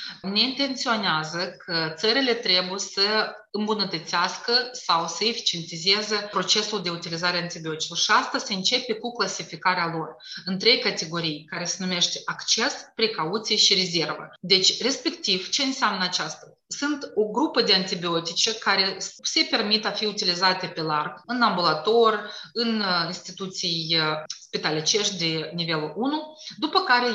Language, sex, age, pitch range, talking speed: Romanian, female, 30-49, 180-230 Hz, 130 wpm